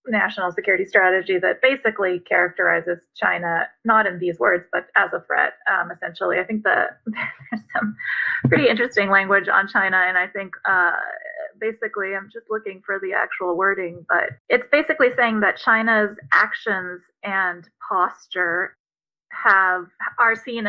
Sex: female